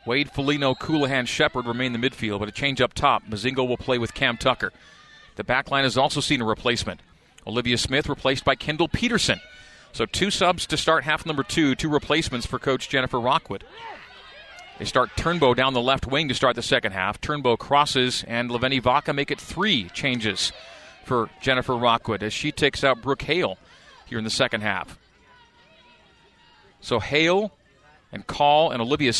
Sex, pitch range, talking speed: male, 115-140 Hz, 180 wpm